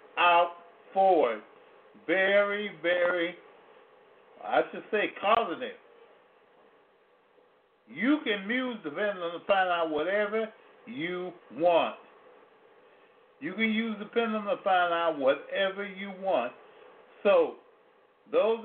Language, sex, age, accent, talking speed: English, male, 50-69, American, 105 wpm